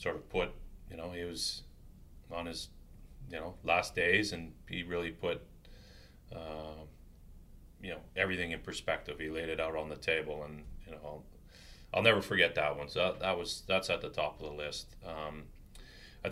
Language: English